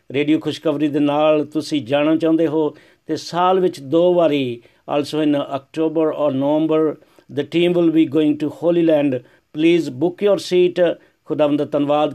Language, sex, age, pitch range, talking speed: Hindi, male, 60-79, 140-165 Hz, 160 wpm